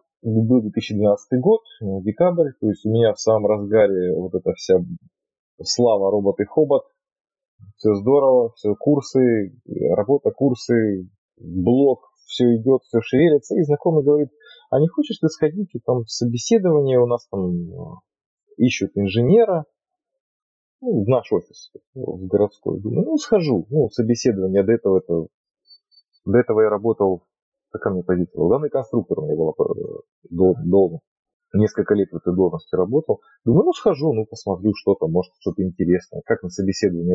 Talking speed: 145 wpm